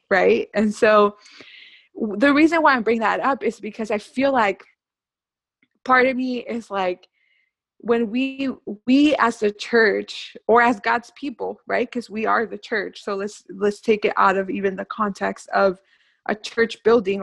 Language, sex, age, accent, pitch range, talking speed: English, female, 20-39, American, 200-240 Hz, 175 wpm